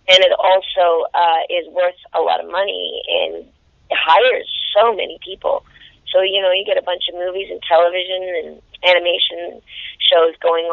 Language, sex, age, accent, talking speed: English, female, 30-49, American, 175 wpm